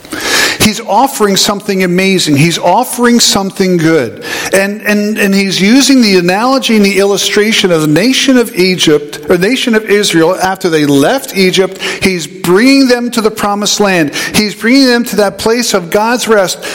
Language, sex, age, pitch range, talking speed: English, male, 50-69, 185-225 Hz, 170 wpm